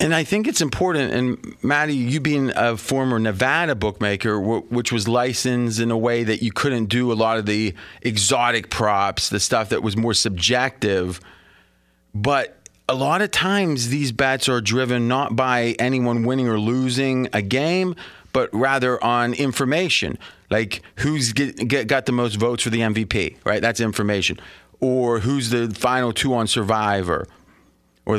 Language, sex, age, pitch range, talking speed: English, male, 30-49, 110-135 Hz, 170 wpm